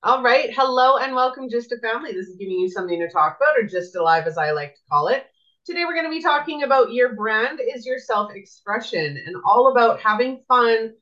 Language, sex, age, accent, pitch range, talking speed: English, female, 30-49, American, 190-255 Hz, 230 wpm